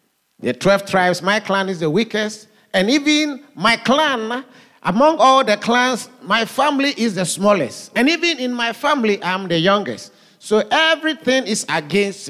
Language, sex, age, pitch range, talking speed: English, male, 50-69, 175-245 Hz, 160 wpm